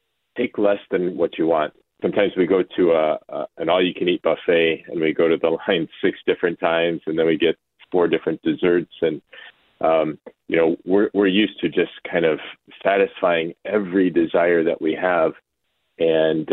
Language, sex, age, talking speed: English, male, 30-49, 180 wpm